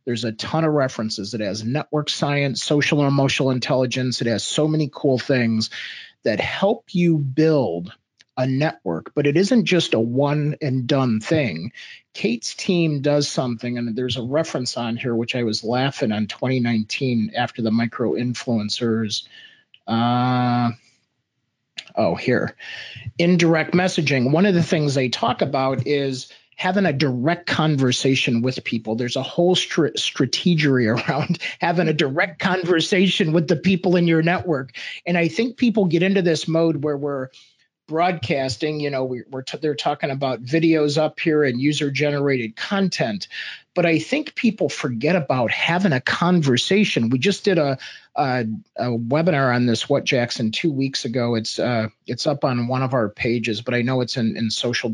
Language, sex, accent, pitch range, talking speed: English, male, American, 120-165 Hz, 170 wpm